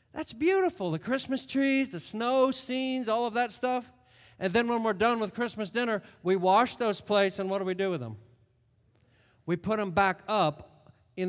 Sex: male